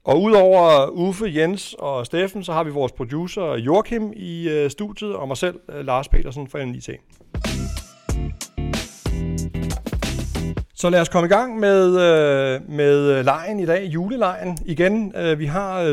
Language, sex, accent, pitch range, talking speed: Danish, male, native, 120-175 Hz, 155 wpm